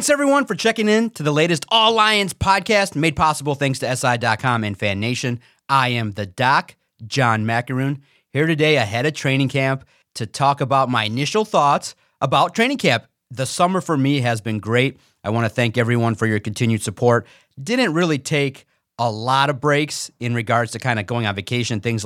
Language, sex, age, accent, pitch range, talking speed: English, male, 30-49, American, 115-145 Hz, 195 wpm